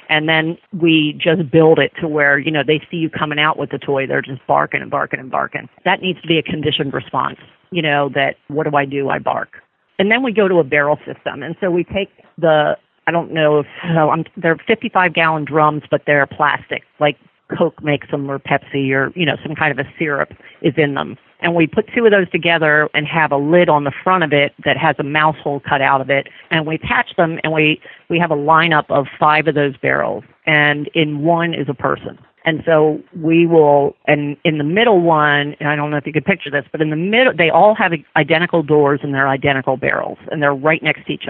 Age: 40-59